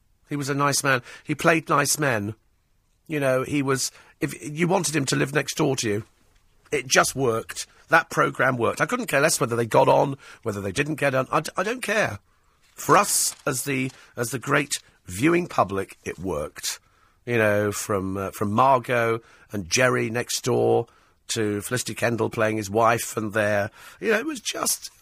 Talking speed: 195 wpm